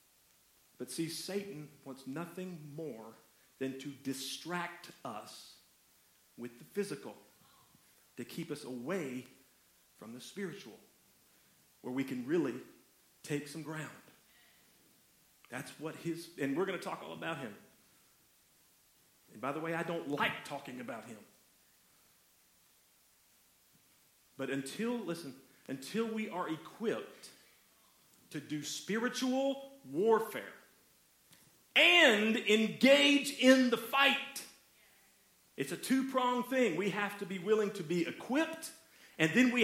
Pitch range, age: 150-245 Hz, 40-59